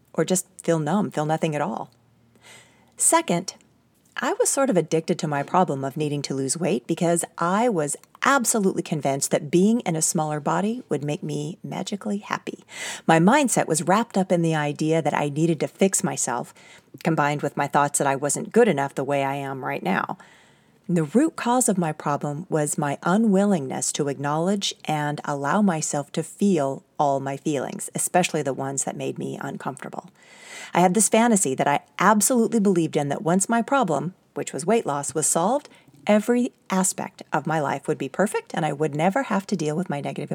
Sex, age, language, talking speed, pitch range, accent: female, 40-59, English, 195 wpm, 150-200 Hz, American